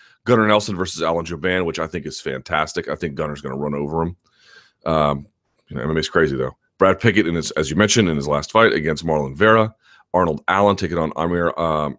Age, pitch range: 30-49, 80-100 Hz